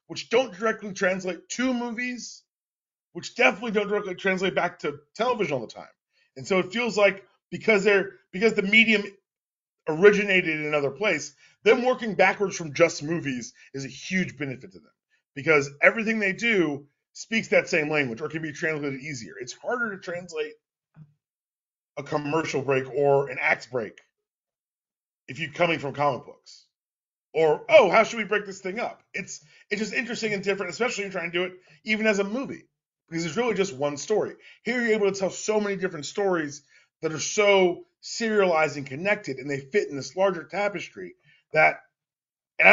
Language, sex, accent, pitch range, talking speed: English, male, American, 155-215 Hz, 180 wpm